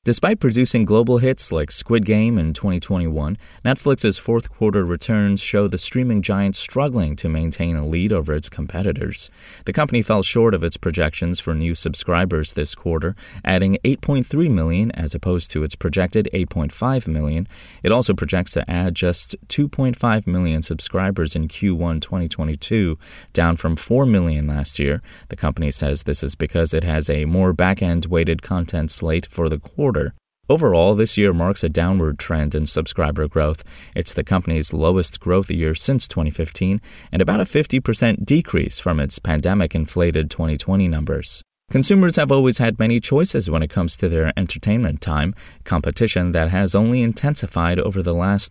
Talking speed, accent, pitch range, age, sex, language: 160 wpm, American, 80-105 Hz, 20-39, male, English